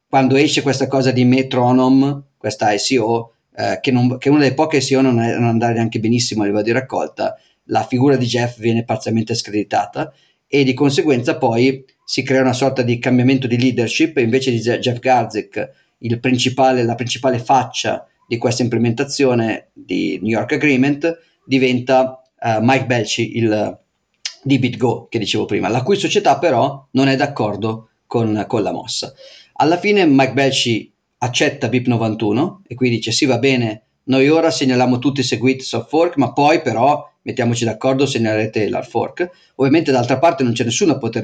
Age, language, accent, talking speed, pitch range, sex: 40-59, Italian, native, 170 wpm, 115-135 Hz, male